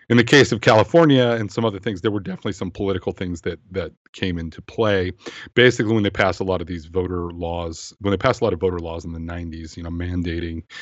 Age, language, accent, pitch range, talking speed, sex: 40-59, English, American, 85-95 Hz, 245 wpm, male